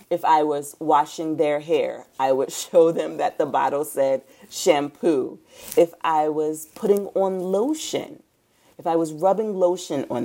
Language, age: English, 30-49